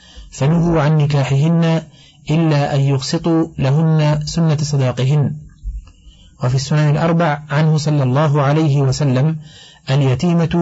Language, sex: Arabic, male